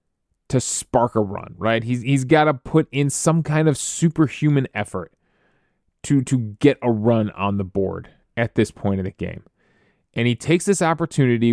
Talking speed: 180 wpm